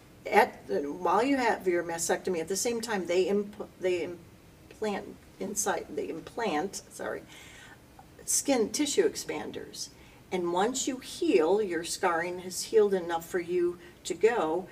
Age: 50-69